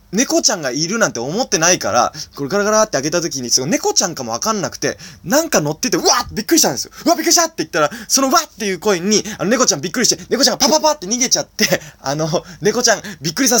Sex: male